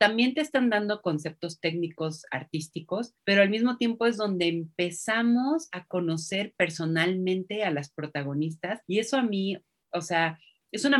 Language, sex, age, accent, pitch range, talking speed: Spanish, female, 40-59, Mexican, 160-195 Hz, 155 wpm